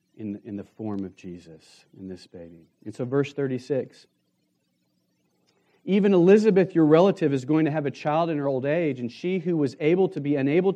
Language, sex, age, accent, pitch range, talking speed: English, male, 40-59, American, 115-190 Hz, 200 wpm